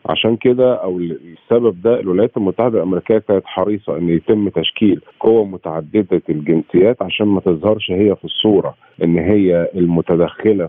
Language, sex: Arabic, male